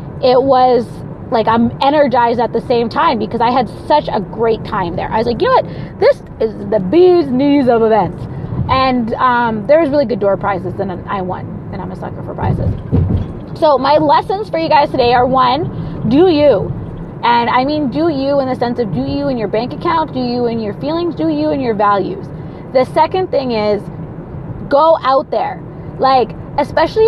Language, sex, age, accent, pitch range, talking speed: English, female, 20-39, American, 215-295 Hz, 205 wpm